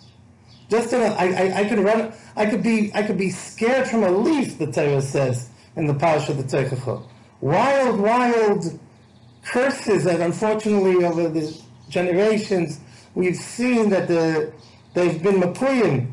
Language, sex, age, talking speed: English, male, 50-69, 150 wpm